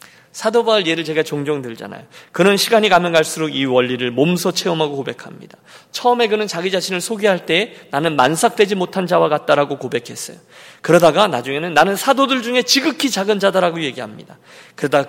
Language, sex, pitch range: Korean, male, 140-200 Hz